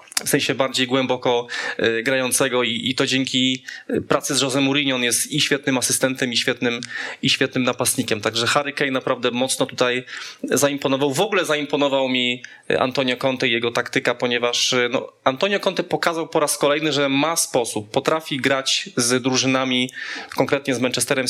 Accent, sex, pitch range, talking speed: native, male, 130-155 Hz, 150 wpm